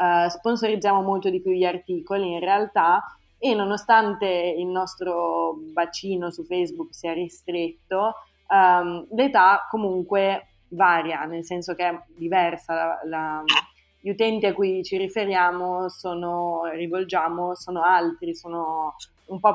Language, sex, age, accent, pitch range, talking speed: Italian, female, 20-39, native, 165-195 Hz, 115 wpm